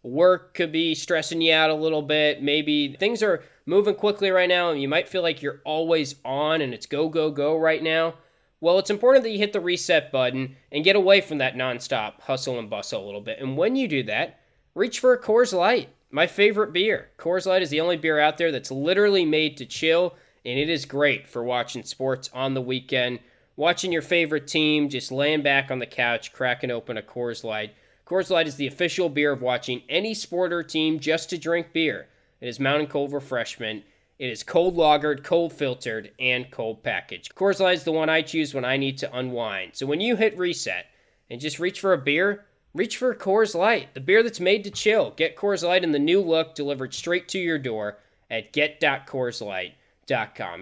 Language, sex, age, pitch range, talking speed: English, male, 20-39, 130-180 Hz, 215 wpm